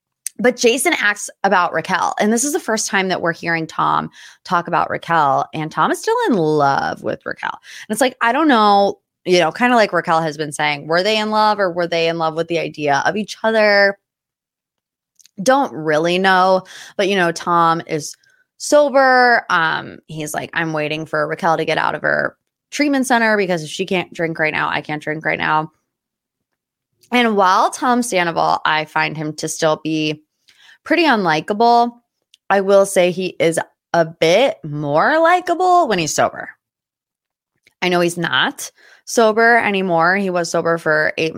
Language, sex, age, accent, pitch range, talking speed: English, female, 20-39, American, 160-225 Hz, 185 wpm